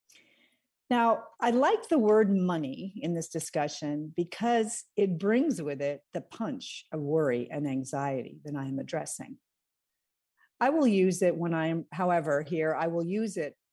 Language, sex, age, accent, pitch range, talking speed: English, female, 50-69, American, 145-190 Hz, 160 wpm